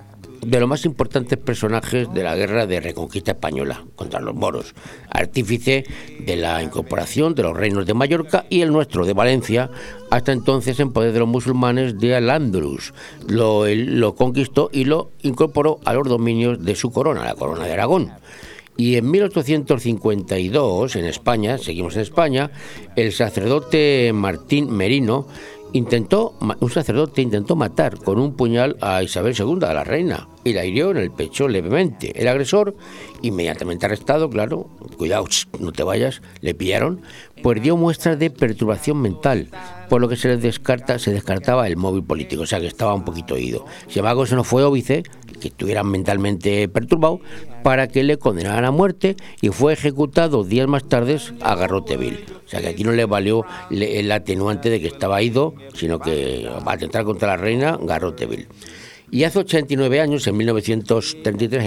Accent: Spanish